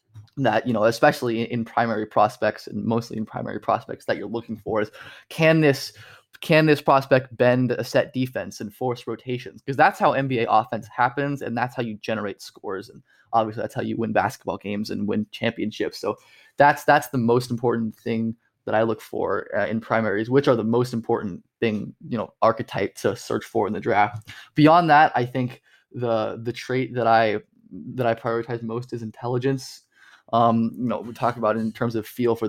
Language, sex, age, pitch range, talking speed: English, male, 20-39, 115-135 Hz, 200 wpm